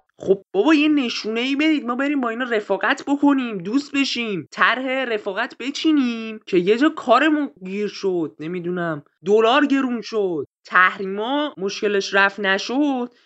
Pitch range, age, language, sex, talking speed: 190-275 Hz, 20-39, Persian, male, 140 wpm